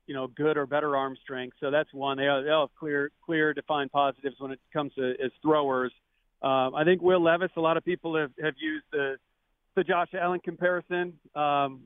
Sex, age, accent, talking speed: male, 40-59, American, 205 wpm